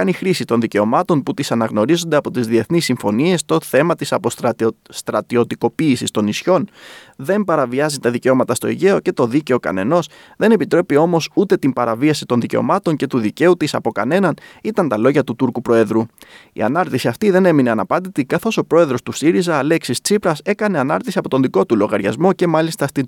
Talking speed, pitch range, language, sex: 170 wpm, 120-175 Hz, Greek, male